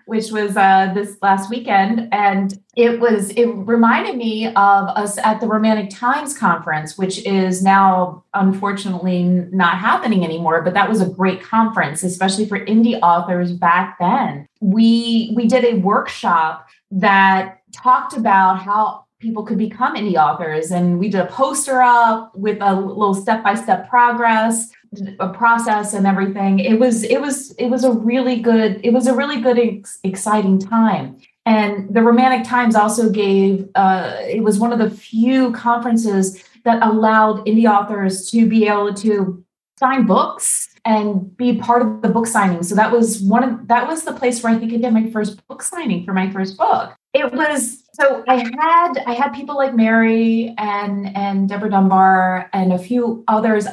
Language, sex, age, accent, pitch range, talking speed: English, female, 30-49, American, 195-240 Hz, 175 wpm